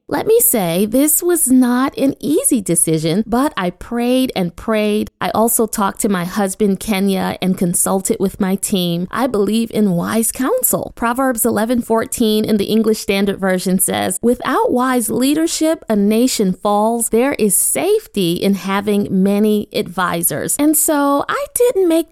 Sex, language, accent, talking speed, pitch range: female, English, American, 155 wpm, 200-280 Hz